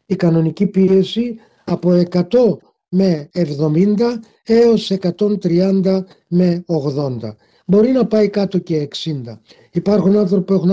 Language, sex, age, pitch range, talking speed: Greek, male, 50-69, 160-195 Hz, 115 wpm